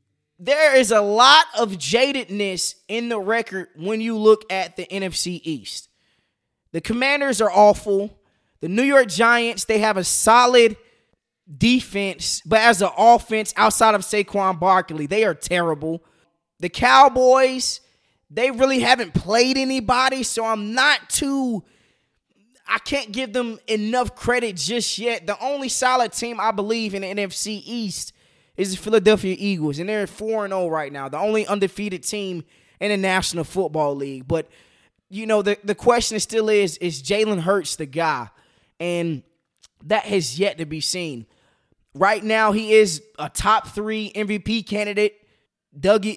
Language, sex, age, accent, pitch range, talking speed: English, male, 20-39, American, 175-225 Hz, 155 wpm